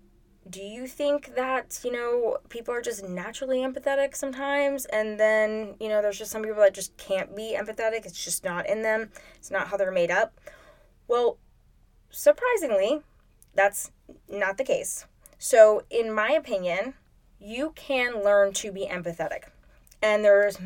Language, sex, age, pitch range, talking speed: English, female, 10-29, 190-255 Hz, 155 wpm